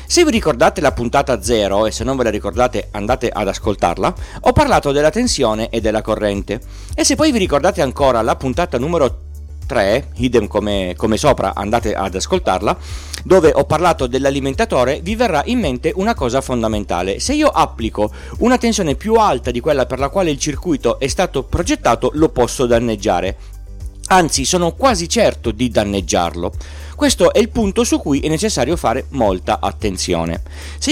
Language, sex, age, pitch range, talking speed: Italian, male, 40-59, 100-150 Hz, 170 wpm